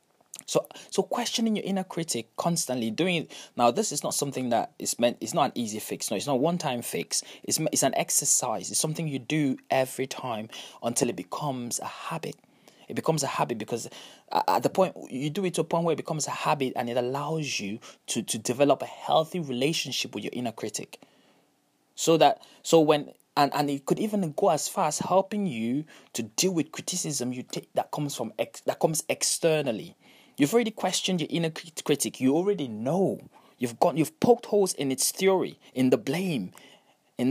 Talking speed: 205 wpm